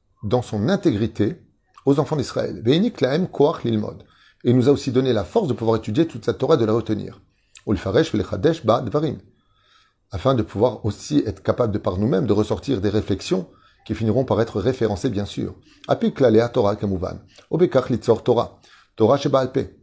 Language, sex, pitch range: French, male, 105-130 Hz